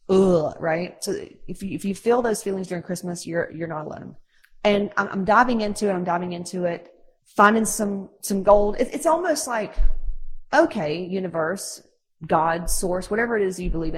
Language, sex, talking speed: English, female, 185 wpm